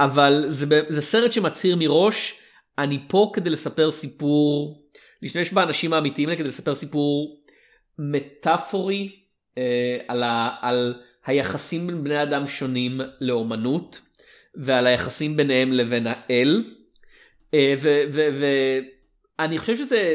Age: 30-49